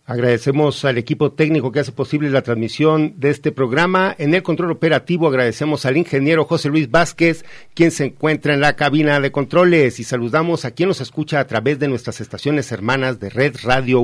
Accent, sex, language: Mexican, male, Spanish